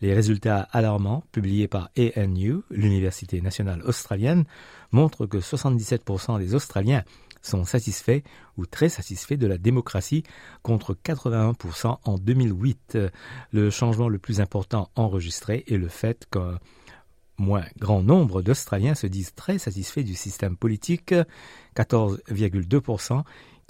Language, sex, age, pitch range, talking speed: French, male, 50-69, 95-125 Hz, 120 wpm